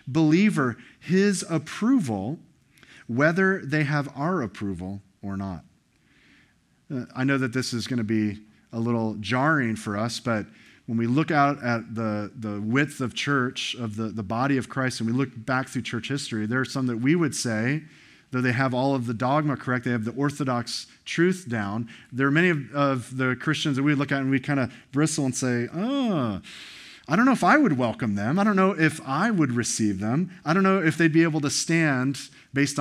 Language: English